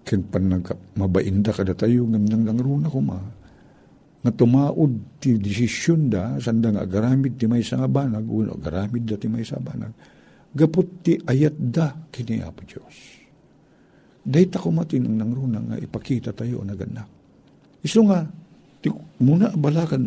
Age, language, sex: 50-69, Filipino, male